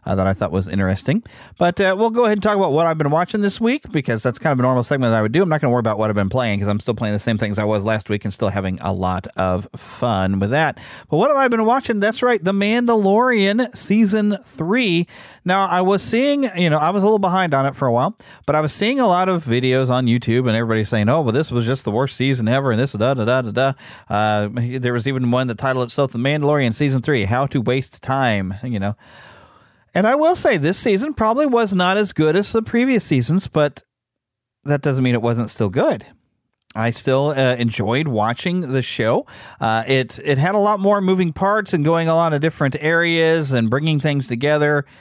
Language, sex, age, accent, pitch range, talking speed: English, male, 30-49, American, 120-185 Hz, 245 wpm